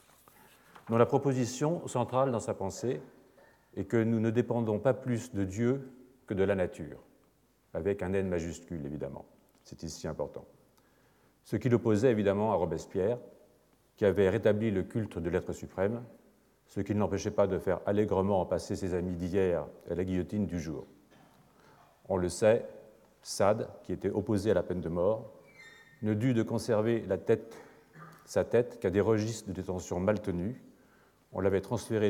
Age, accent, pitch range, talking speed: 40-59, French, 95-125 Hz, 170 wpm